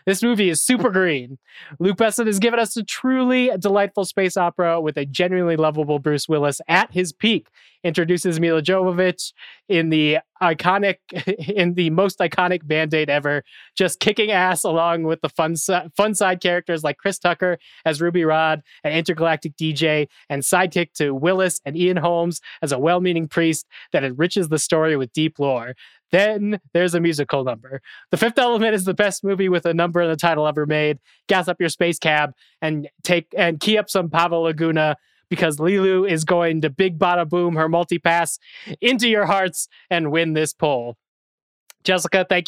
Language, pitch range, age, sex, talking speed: English, 155-185 Hz, 20-39, male, 175 wpm